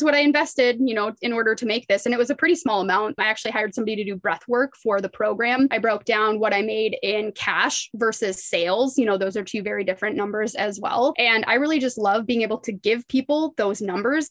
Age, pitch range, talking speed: 20-39, 205-255 Hz, 250 wpm